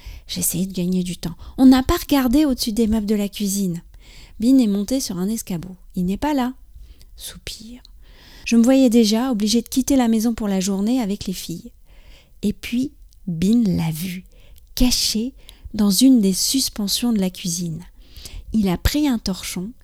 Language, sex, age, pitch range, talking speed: French, female, 40-59, 185-240 Hz, 180 wpm